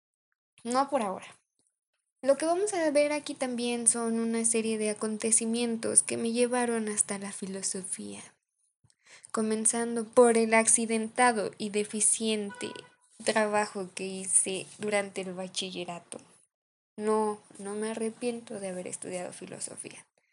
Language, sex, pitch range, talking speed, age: Spanish, female, 205-245 Hz, 120 wpm, 10-29